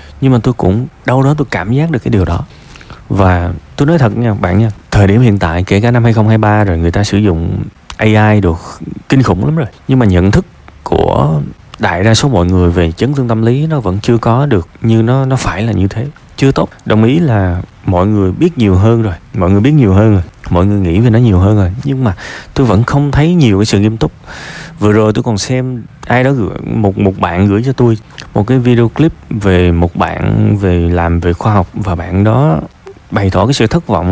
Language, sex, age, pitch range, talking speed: Vietnamese, male, 20-39, 100-135 Hz, 240 wpm